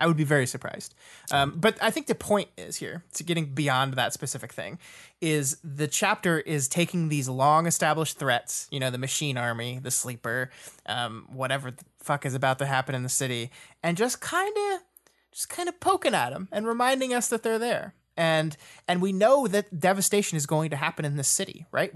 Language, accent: English, American